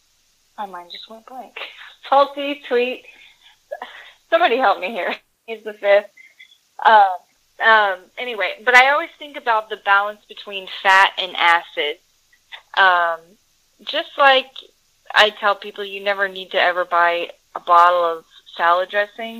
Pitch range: 190-245 Hz